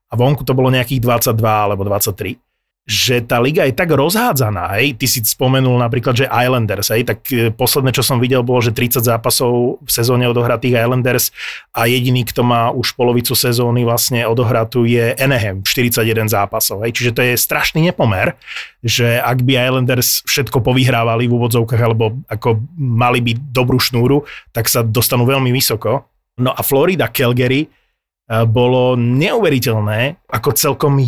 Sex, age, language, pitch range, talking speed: male, 30-49, Slovak, 115-135 Hz, 155 wpm